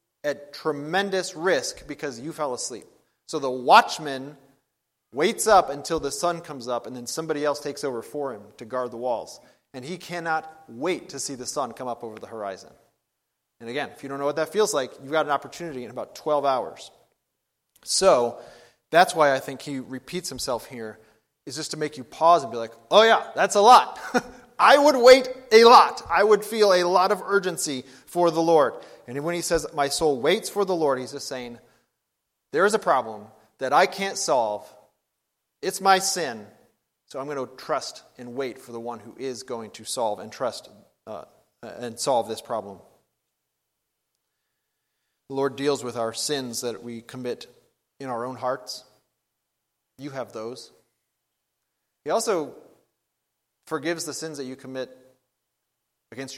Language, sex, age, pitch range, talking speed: English, male, 30-49, 125-170 Hz, 180 wpm